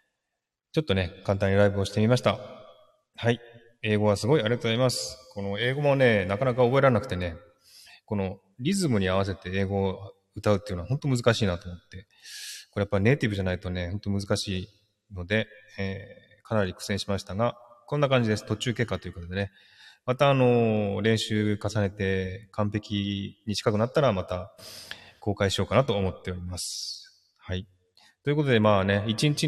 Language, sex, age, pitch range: Japanese, male, 20-39, 95-120 Hz